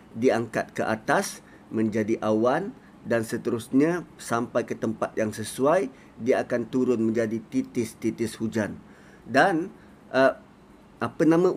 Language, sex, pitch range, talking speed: Malay, male, 130-185 Hz, 115 wpm